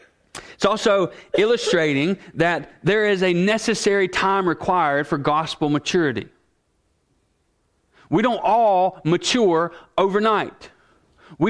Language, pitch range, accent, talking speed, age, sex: English, 170-215 Hz, American, 100 wpm, 40-59, male